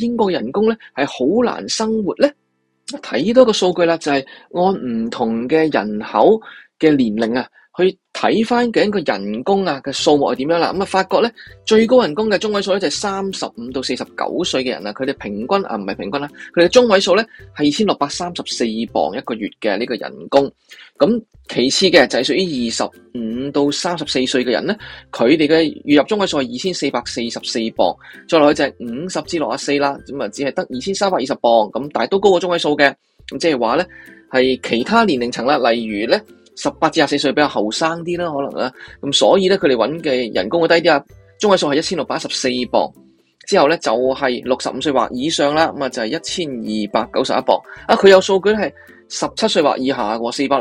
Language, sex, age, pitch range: Chinese, male, 20-39, 130-195 Hz